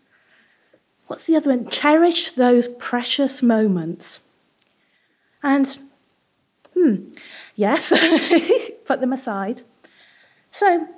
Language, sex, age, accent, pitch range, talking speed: English, female, 30-49, British, 195-275 Hz, 80 wpm